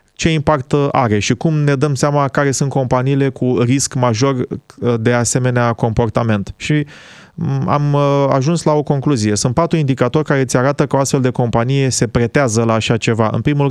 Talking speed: 180 wpm